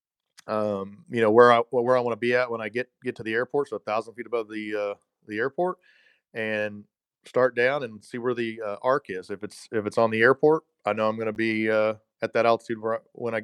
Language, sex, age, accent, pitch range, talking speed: English, male, 40-59, American, 105-125 Hz, 250 wpm